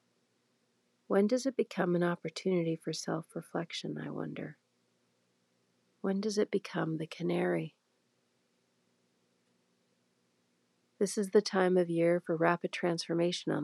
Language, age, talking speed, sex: English, 40-59, 120 wpm, female